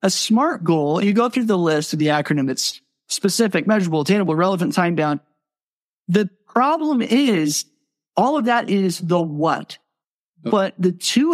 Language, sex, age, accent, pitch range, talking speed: English, male, 40-59, American, 155-210 Hz, 160 wpm